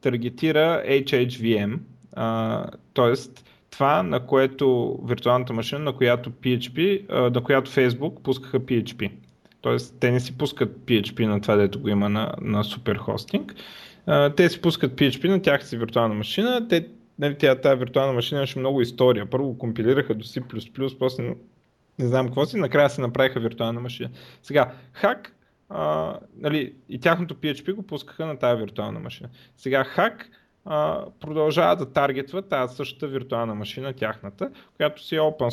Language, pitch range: Bulgarian, 120-155 Hz